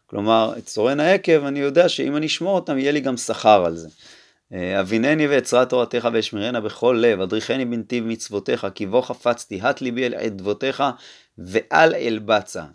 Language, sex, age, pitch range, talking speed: Hebrew, male, 30-49, 95-135 Hz, 160 wpm